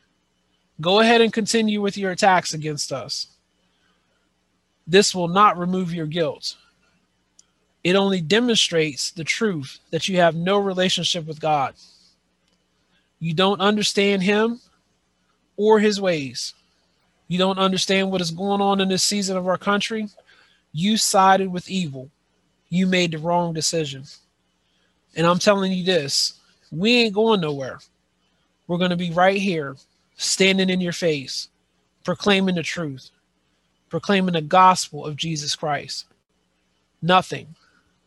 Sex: male